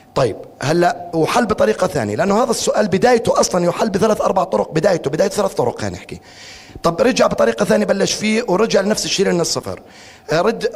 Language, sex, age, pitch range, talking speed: Arabic, male, 30-49, 155-210 Hz, 180 wpm